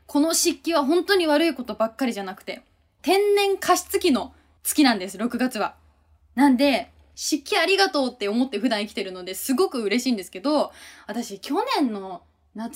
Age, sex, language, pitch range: 20-39, female, Japanese, 225-320 Hz